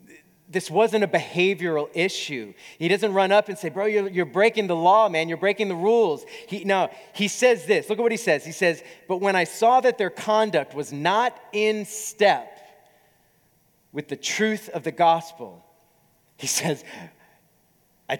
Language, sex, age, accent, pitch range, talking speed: English, male, 30-49, American, 155-210 Hz, 180 wpm